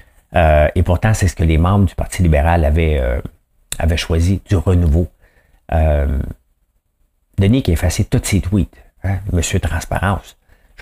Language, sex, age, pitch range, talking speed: English, male, 50-69, 80-100 Hz, 160 wpm